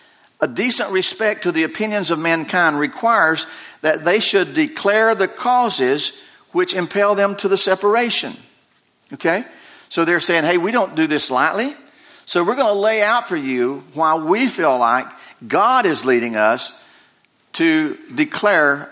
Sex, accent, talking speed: male, American, 155 wpm